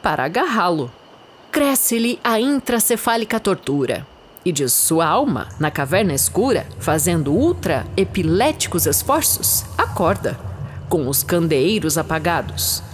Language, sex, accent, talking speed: Portuguese, female, Brazilian, 95 wpm